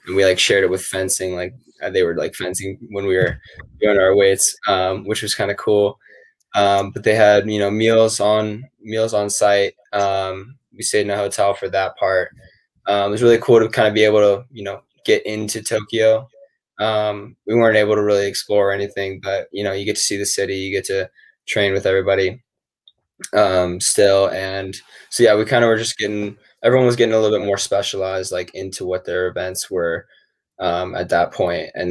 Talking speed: 215 wpm